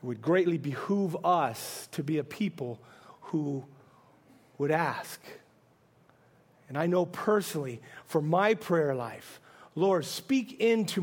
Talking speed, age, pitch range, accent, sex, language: 125 wpm, 40-59, 160-210 Hz, American, male, English